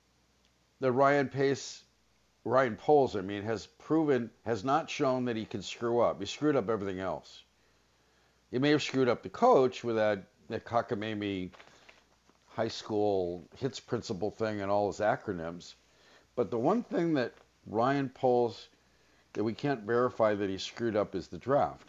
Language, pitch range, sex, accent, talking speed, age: English, 95-120 Hz, male, American, 160 wpm, 50-69